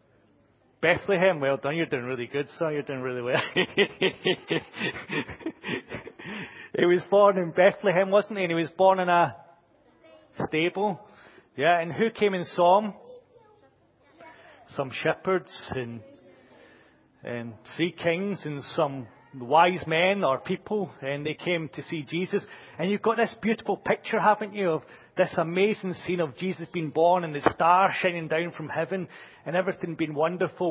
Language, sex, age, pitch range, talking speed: English, male, 40-59, 155-185 Hz, 150 wpm